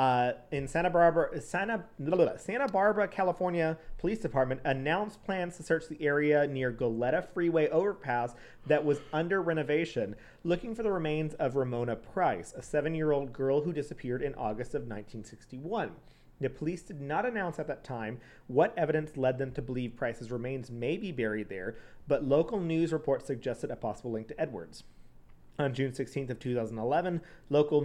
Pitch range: 125-160 Hz